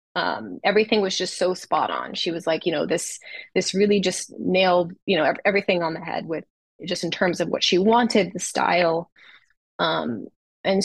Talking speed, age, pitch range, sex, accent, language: 195 wpm, 20-39, 175-215 Hz, female, American, English